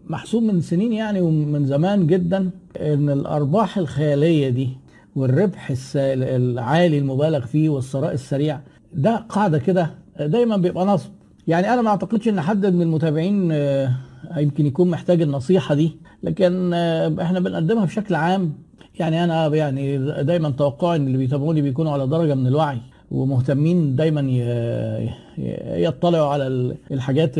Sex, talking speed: male, 130 wpm